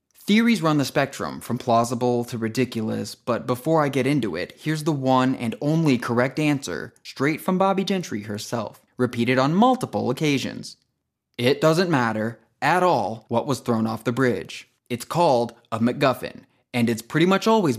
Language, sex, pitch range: English, male, 115-145 Hz